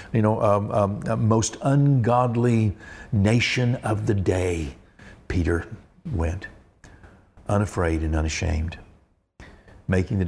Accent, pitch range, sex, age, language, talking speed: American, 90-120 Hz, male, 60-79, English, 105 wpm